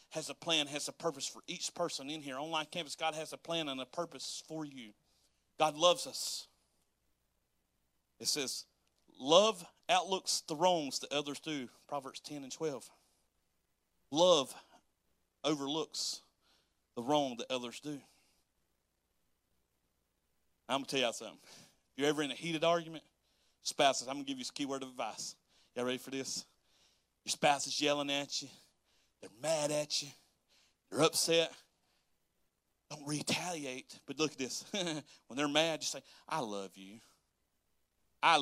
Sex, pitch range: male, 135-190 Hz